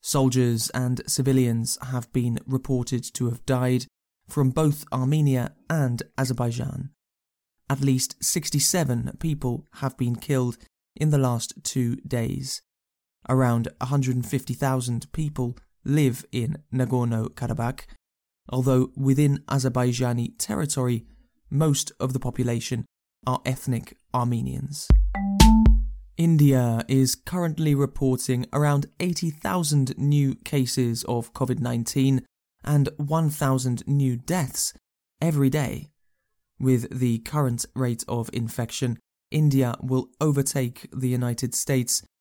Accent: British